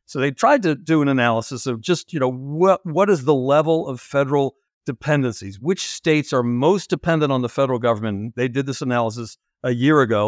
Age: 60-79